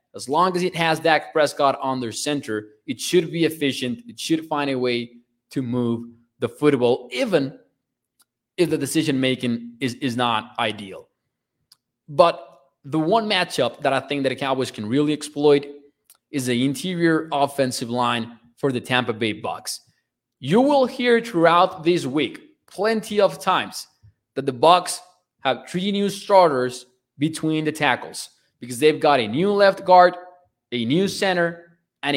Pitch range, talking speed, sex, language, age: 125-180 Hz, 155 wpm, male, English, 20-39